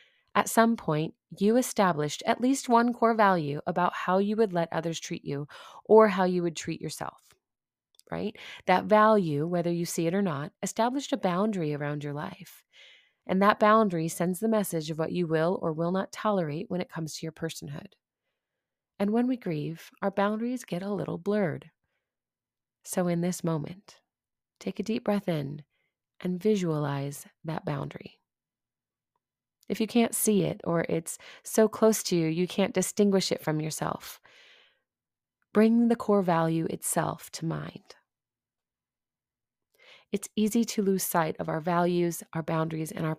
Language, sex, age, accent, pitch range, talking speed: English, female, 30-49, American, 160-210 Hz, 165 wpm